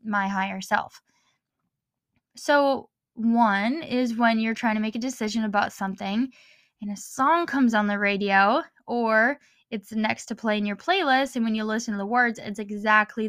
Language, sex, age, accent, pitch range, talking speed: English, female, 10-29, American, 205-250 Hz, 175 wpm